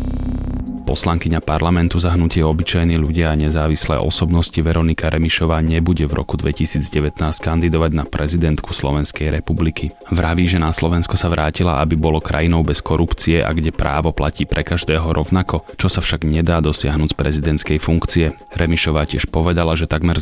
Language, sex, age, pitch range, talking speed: Slovak, male, 30-49, 75-85 Hz, 150 wpm